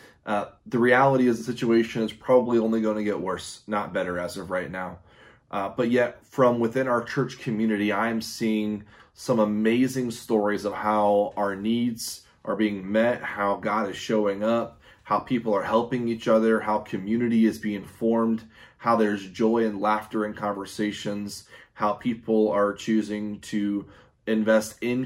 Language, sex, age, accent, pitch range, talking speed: English, male, 20-39, American, 105-120 Hz, 165 wpm